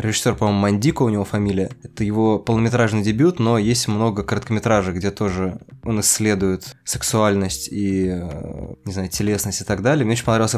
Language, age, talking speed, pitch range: Russian, 20-39, 165 wpm, 105-120 Hz